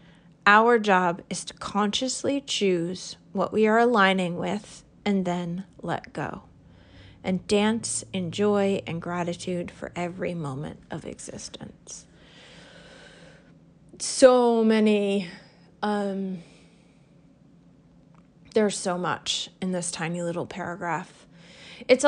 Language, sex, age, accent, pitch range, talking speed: English, female, 30-49, American, 175-210 Hz, 105 wpm